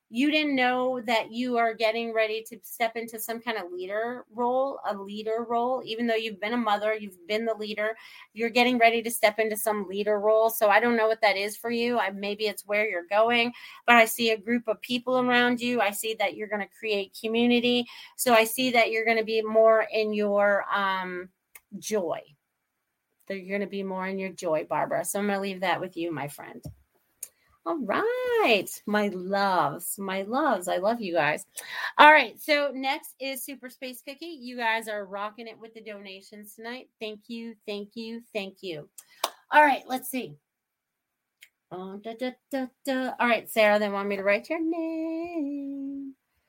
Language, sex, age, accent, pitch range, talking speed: English, female, 30-49, American, 210-255 Hz, 190 wpm